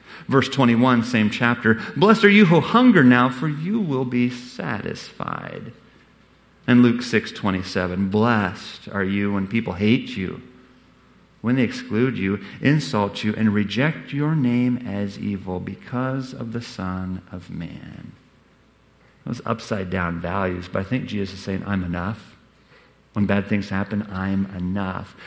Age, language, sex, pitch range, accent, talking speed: 50-69, English, male, 100-125 Hz, American, 145 wpm